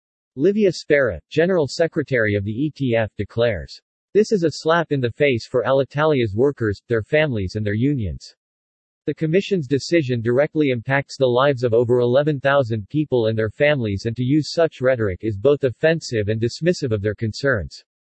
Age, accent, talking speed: 50-69, American, 165 wpm